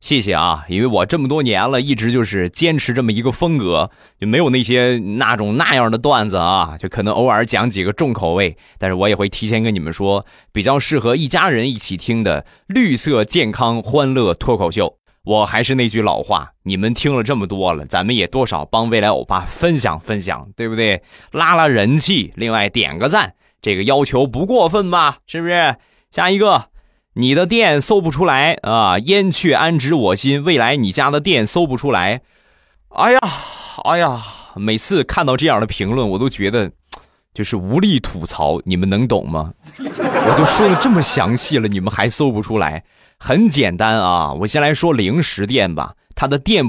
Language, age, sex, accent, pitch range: Chinese, 20-39, male, native, 100-145 Hz